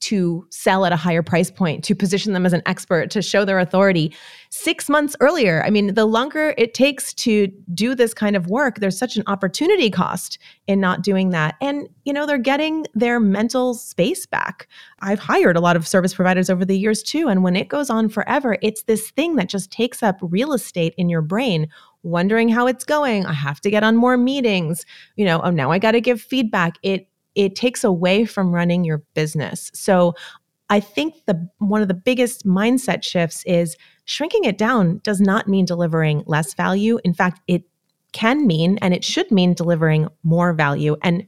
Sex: female